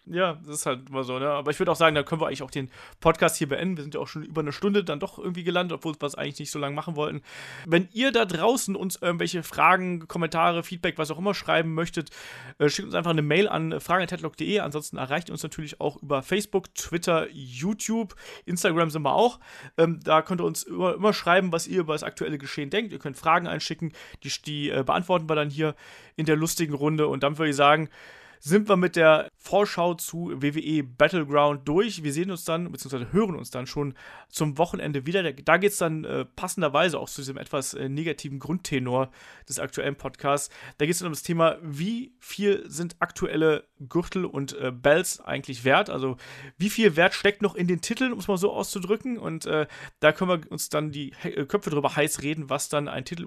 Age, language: 30-49, German